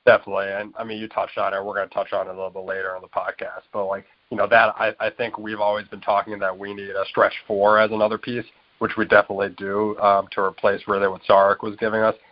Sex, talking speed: male, 270 wpm